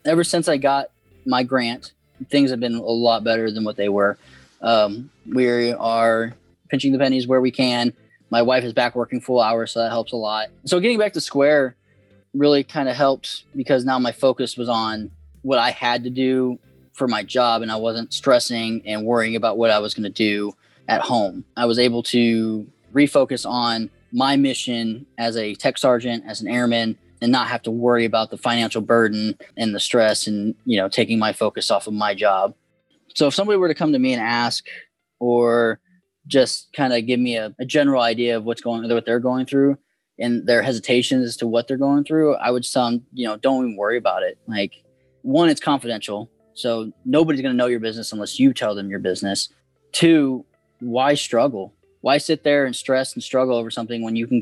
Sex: male